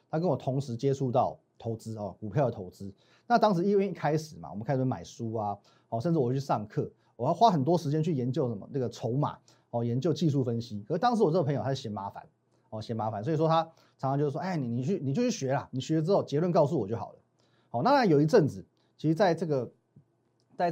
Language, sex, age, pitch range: Chinese, male, 30-49, 120-165 Hz